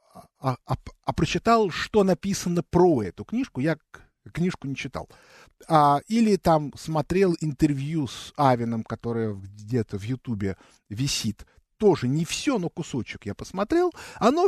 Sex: male